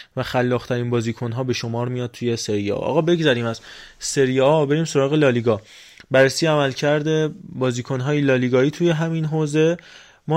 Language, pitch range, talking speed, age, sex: Persian, 120-145 Hz, 155 wpm, 20-39, male